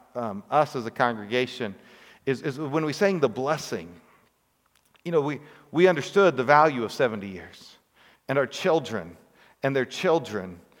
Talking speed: 155 wpm